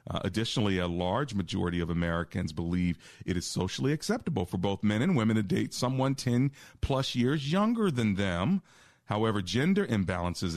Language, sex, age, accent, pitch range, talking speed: English, male, 40-59, American, 90-115 Hz, 160 wpm